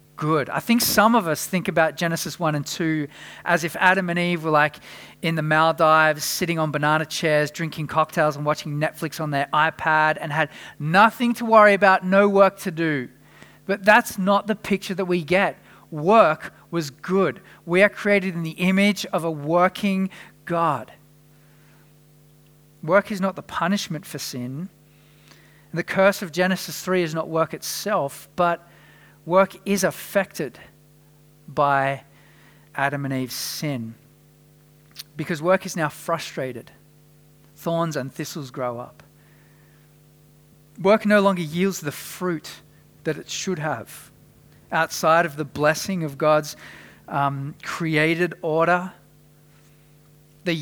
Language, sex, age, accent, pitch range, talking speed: English, male, 40-59, Australian, 150-175 Hz, 140 wpm